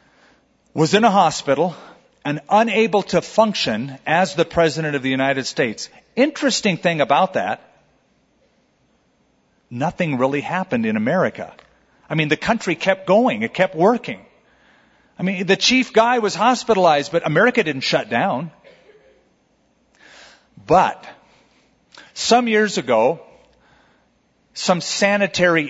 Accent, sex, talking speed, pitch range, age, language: American, male, 120 wpm, 145-220 Hz, 40-59, English